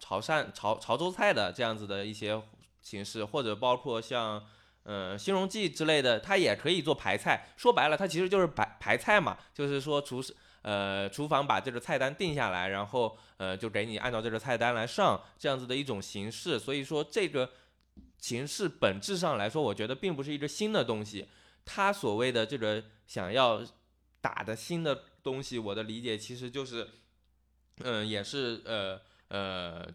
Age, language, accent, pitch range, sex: 20-39, Chinese, native, 100-140 Hz, male